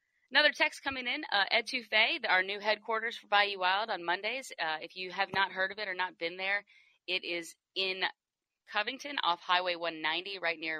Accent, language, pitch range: American, English, 150-205 Hz